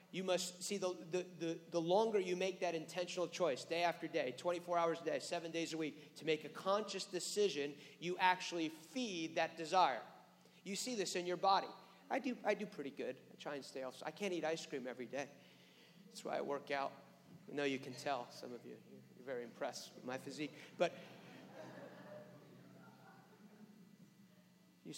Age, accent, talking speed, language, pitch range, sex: 40-59, American, 190 wpm, English, 165-205 Hz, male